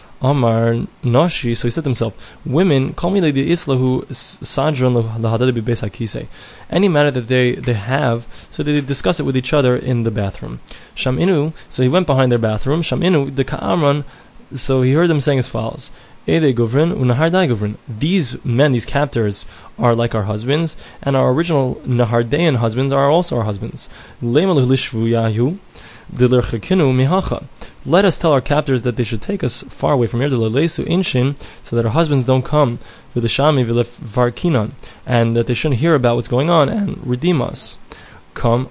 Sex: male